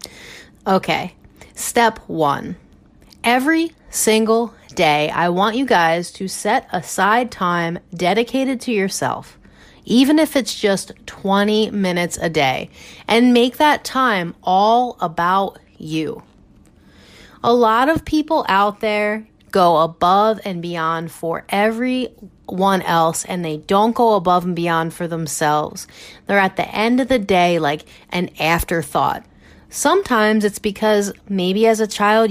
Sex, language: female, English